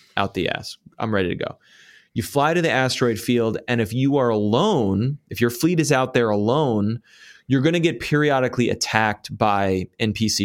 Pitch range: 110-140 Hz